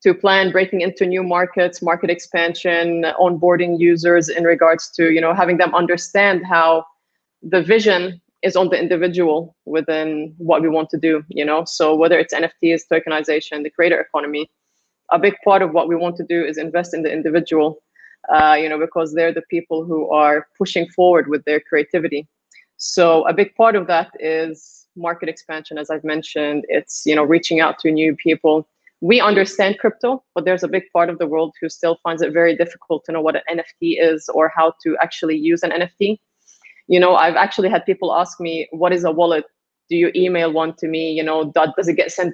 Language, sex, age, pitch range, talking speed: English, female, 20-39, 160-190 Hz, 205 wpm